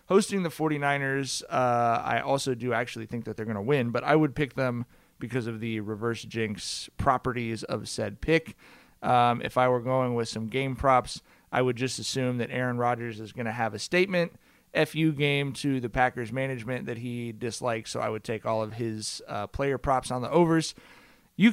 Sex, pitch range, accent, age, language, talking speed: male, 120-160 Hz, American, 30-49, English, 205 wpm